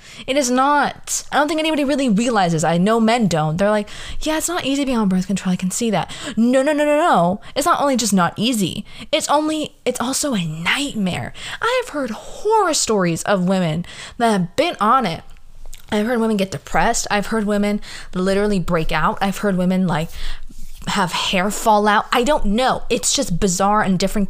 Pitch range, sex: 175-245 Hz, female